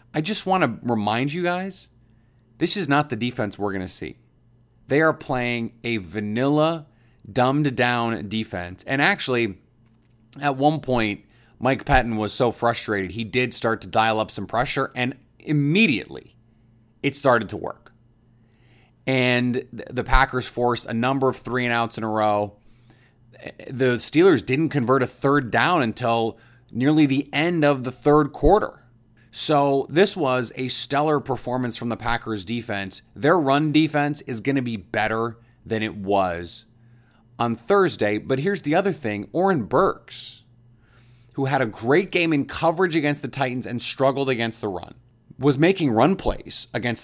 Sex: male